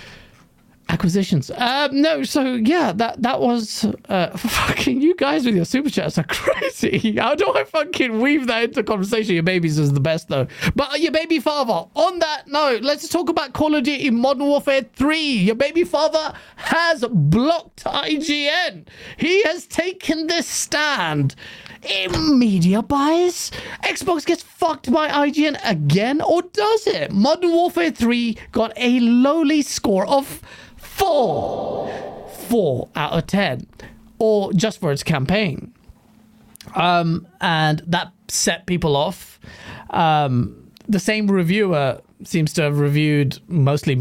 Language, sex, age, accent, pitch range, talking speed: English, male, 30-49, British, 180-295 Hz, 145 wpm